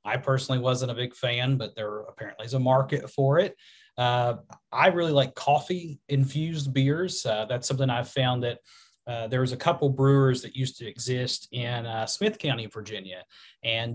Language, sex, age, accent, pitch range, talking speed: English, male, 30-49, American, 115-135 Hz, 180 wpm